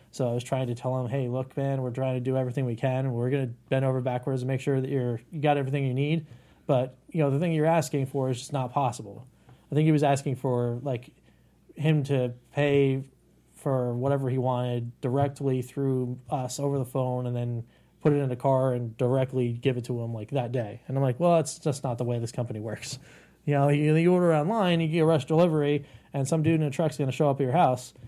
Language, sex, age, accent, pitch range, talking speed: English, male, 20-39, American, 125-150 Hz, 250 wpm